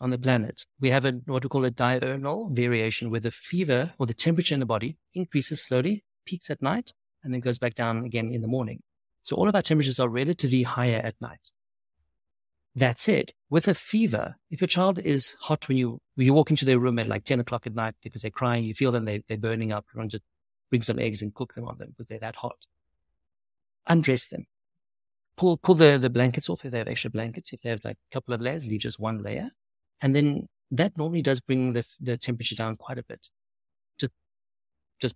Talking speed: 230 wpm